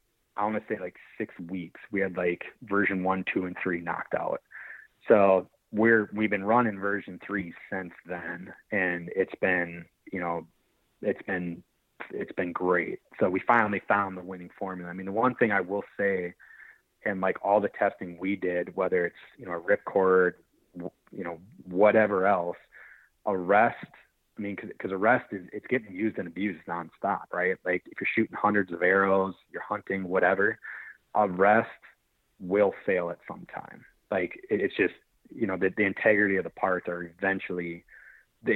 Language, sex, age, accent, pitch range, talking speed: English, male, 30-49, American, 90-105 Hz, 175 wpm